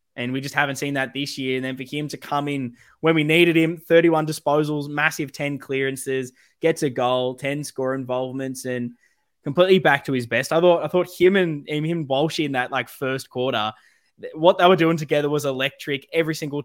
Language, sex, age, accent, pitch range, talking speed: English, male, 10-29, Australian, 130-150 Hz, 215 wpm